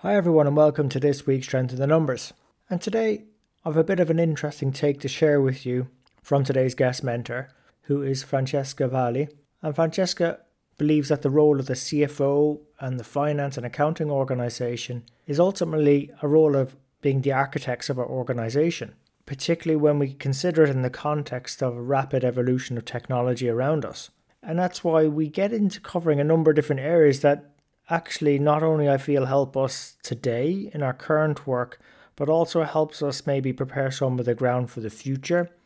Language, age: English, 30-49